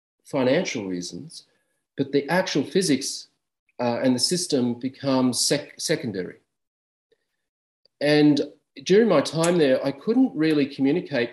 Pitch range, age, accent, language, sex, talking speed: 115-150 Hz, 40-59, Australian, English, male, 110 wpm